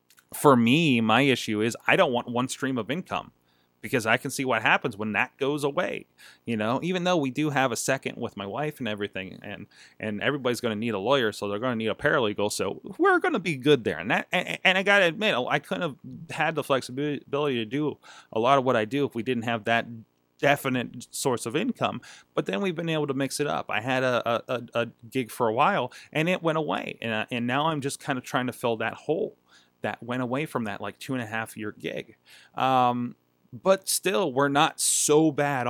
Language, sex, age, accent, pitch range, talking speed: English, male, 30-49, American, 115-150 Hz, 240 wpm